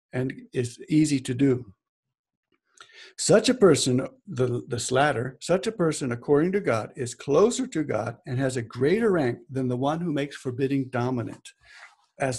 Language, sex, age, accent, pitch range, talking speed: English, male, 60-79, American, 130-155 Hz, 165 wpm